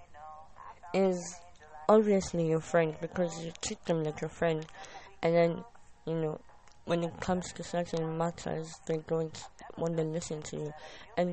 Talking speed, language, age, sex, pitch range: 155 wpm, English, 20-39, female, 160-195 Hz